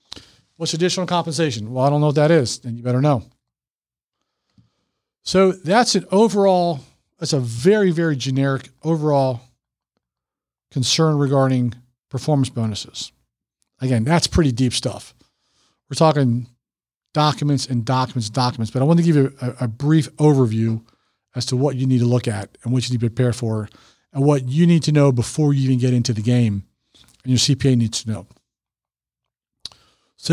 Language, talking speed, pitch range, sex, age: English, 170 wpm, 120-160 Hz, male, 40-59